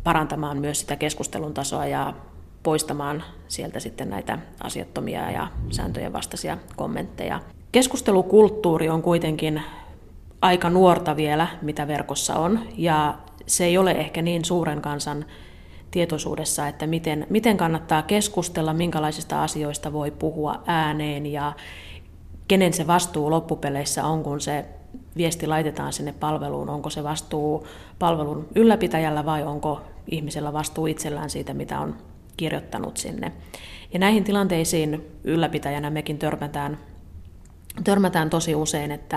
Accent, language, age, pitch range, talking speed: native, Finnish, 30-49, 145-165 Hz, 120 wpm